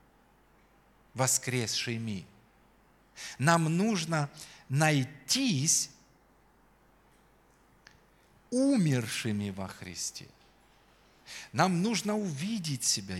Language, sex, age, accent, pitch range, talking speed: Russian, male, 40-59, native, 125-180 Hz, 50 wpm